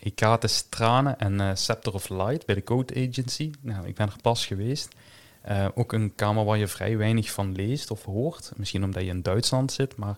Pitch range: 100-115 Hz